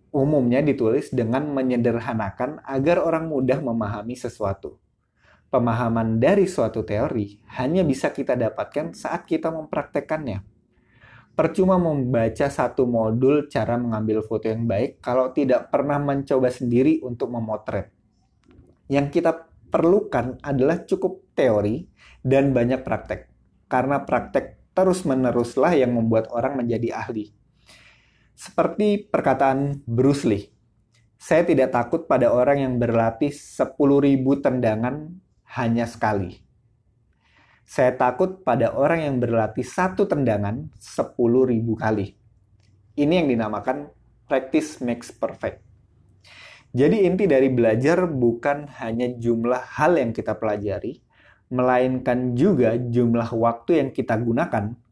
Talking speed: 115 wpm